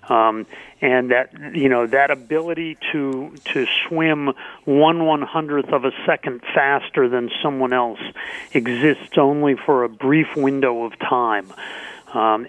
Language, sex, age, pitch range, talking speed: English, male, 40-59, 135-165 Hz, 140 wpm